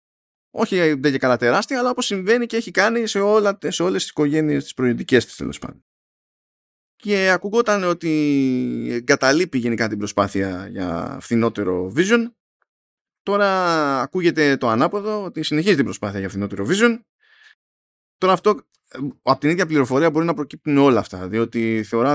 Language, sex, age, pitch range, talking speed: Greek, male, 20-39, 105-170 Hz, 150 wpm